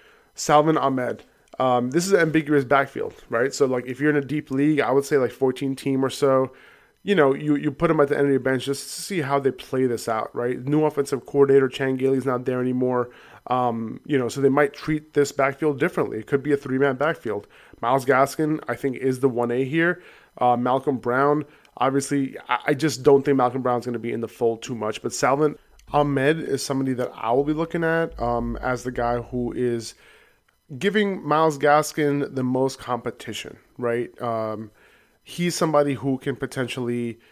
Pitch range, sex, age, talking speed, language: 125-145 Hz, male, 20-39, 205 wpm, English